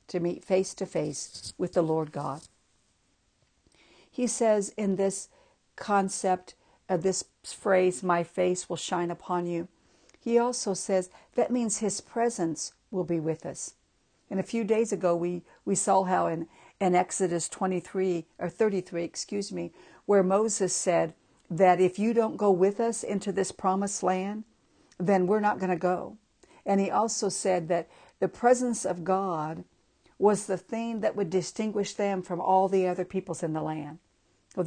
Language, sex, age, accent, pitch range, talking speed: English, female, 60-79, American, 165-200 Hz, 165 wpm